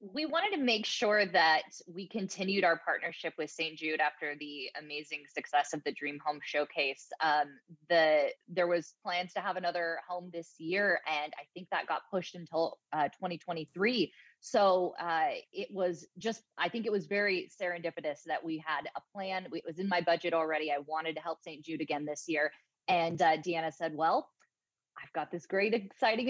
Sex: female